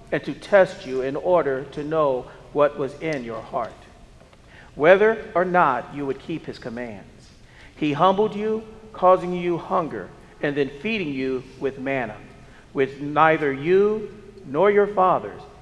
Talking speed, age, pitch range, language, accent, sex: 150 wpm, 50-69, 140-190 Hz, English, American, male